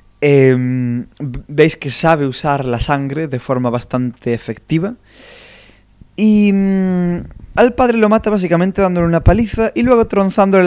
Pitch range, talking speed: 115-175 Hz, 135 wpm